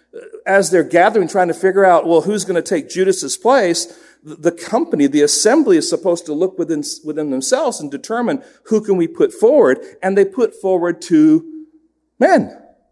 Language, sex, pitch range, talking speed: English, male, 175-250 Hz, 175 wpm